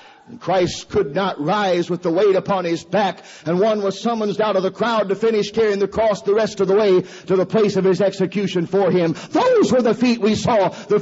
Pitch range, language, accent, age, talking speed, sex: 160-260 Hz, English, American, 50-69, 235 wpm, male